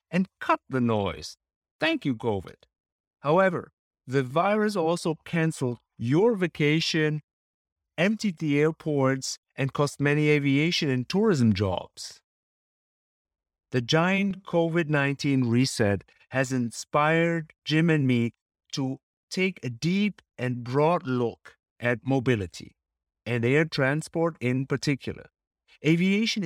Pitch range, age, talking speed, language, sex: 130-180 Hz, 50-69, 110 wpm, English, male